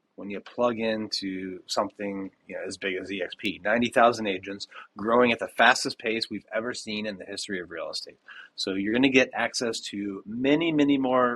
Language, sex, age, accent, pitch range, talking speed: English, male, 30-49, American, 110-150 Hz, 190 wpm